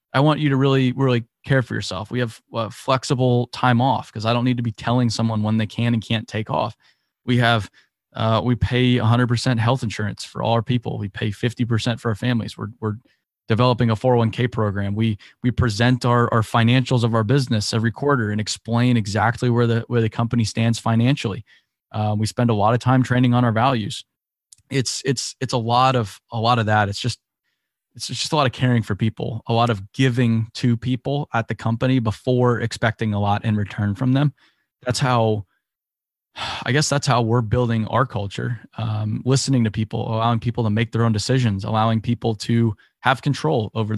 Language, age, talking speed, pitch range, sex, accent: English, 20-39, 205 wpm, 110-125 Hz, male, American